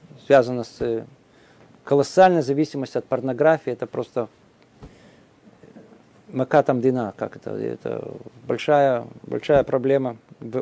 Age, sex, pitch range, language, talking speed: 40-59, male, 130-160 Hz, Russian, 85 wpm